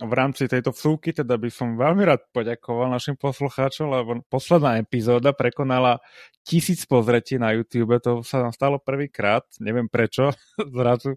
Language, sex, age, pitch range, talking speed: Slovak, male, 20-39, 115-140 Hz, 150 wpm